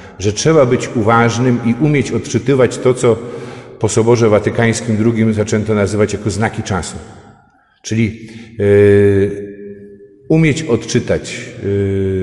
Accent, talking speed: native, 105 wpm